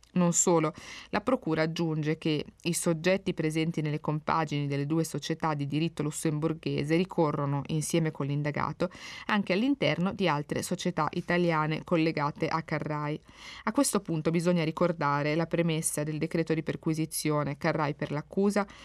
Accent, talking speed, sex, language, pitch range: native, 140 wpm, female, Italian, 155-180 Hz